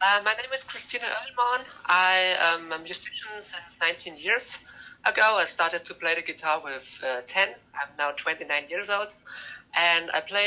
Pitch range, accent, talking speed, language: 155-195 Hz, German, 180 wpm, English